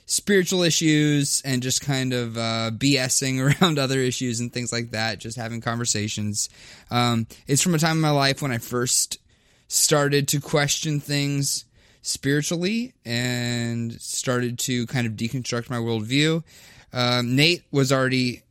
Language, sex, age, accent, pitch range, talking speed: English, male, 20-39, American, 115-150 Hz, 150 wpm